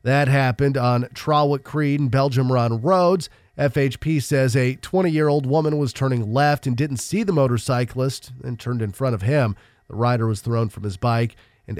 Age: 40-59